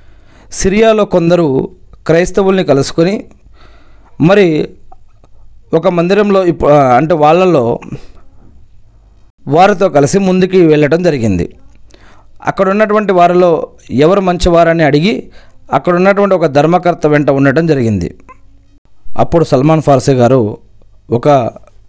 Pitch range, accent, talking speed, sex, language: 110-155 Hz, native, 90 wpm, male, Telugu